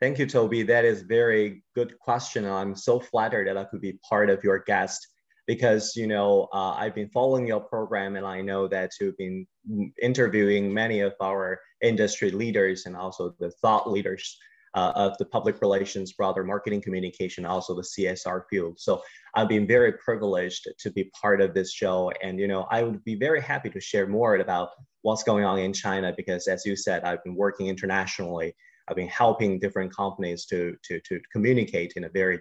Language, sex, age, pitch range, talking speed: English, male, 20-39, 95-110 Hz, 195 wpm